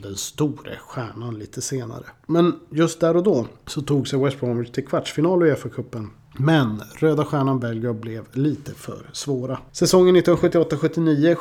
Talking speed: 155 wpm